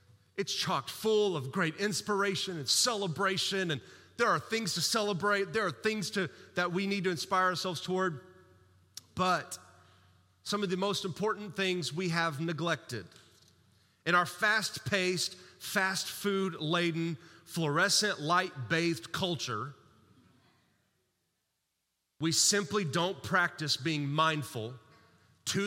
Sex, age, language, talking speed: male, 30-49, English, 110 wpm